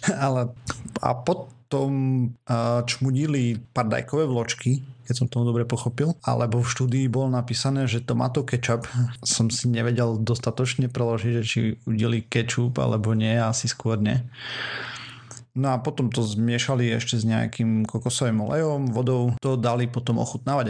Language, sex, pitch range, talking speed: Slovak, male, 115-130 Hz, 150 wpm